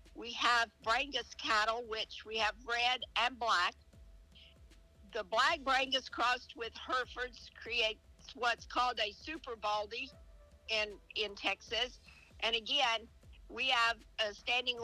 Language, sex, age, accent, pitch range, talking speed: English, female, 50-69, American, 220-250 Hz, 125 wpm